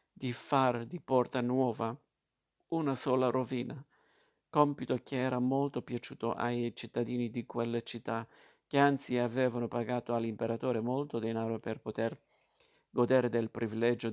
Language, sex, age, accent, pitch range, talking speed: Italian, male, 50-69, native, 115-130 Hz, 125 wpm